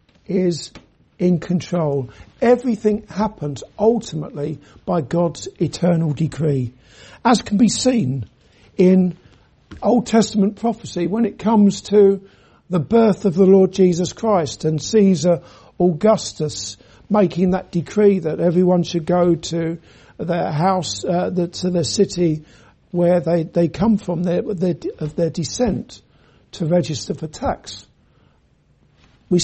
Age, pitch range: 60-79, 170-220 Hz